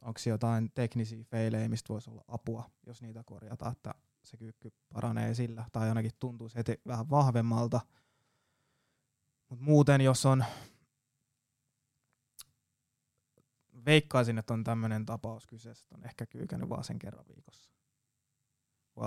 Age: 20-39